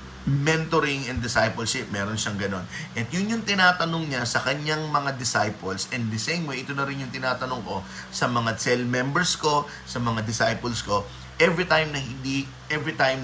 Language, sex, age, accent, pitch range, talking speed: Filipino, male, 20-39, native, 110-175 Hz, 180 wpm